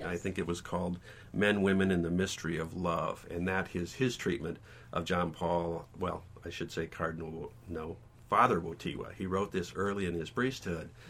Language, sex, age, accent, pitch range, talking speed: English, male, 50-69, American, 85-95 Hz, 190 wpm